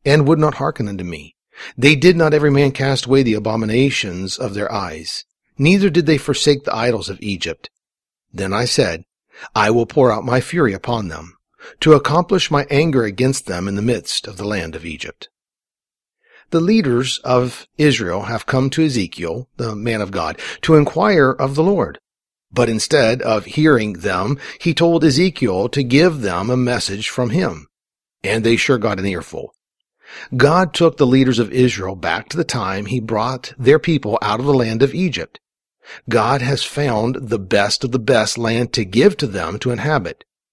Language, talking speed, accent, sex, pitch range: English, 185 wpm, American, male, 105-140 Hz